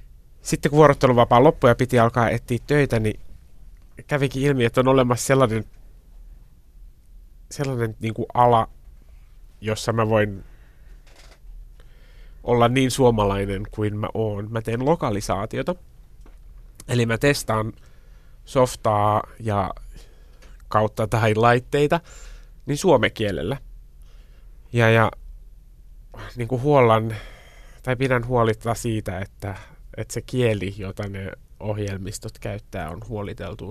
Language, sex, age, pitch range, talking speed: Finnish, male, 30-49, 100-125 Hz, 110 wpm